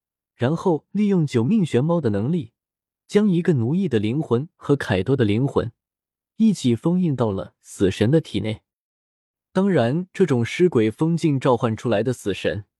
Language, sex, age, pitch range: Chinese, male, 20-39, 110-175 Hz